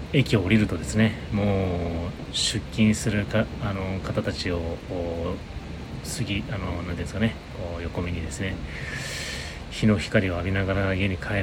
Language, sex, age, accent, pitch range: Japanese, male, 30-49, native, 85-110 Hz